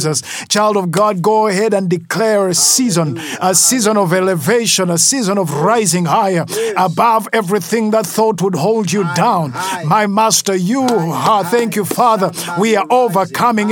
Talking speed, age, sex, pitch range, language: 155 wpm, 50-69, male, 185-225 Hz, English